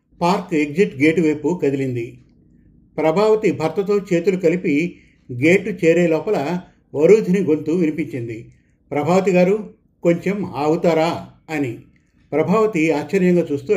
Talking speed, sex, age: 100 wpm, male, 50-69